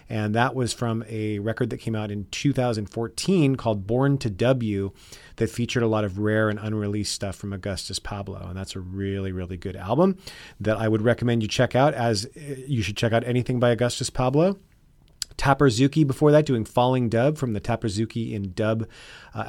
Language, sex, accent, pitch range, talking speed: English, male, American, 105-130 Hz, 190 wpm